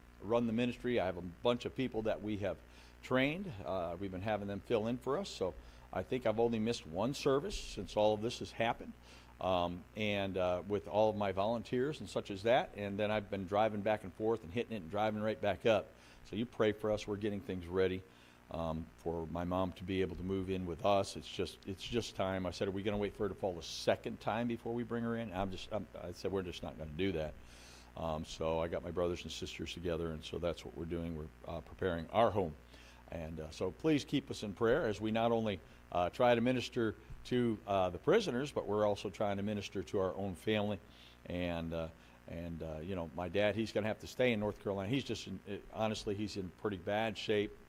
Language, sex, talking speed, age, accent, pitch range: English, male, 240 wpm, 50-69, American, 85-110 Hz